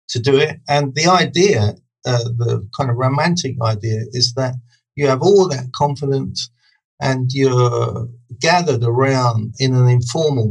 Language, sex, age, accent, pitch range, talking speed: English, male, 50-69, British, 120-155 Hz, 150 wpm